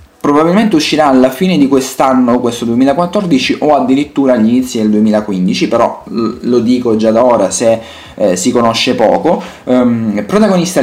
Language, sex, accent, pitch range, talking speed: Italian, male, native, 115-185 Hz, 150 wpm